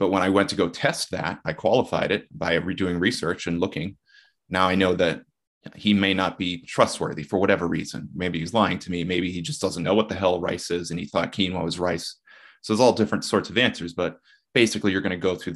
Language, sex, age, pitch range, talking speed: English, male, 30-49, 85-100 Hz, 245 wpm